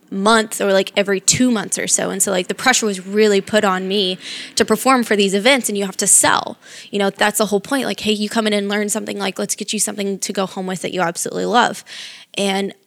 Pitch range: 195-230 Hz